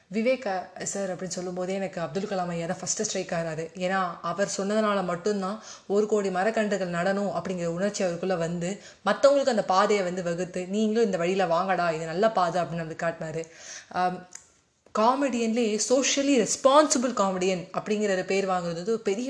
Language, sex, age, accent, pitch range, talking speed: Tamil, female, 20-39, native, 180-220 Hz, 150 wpm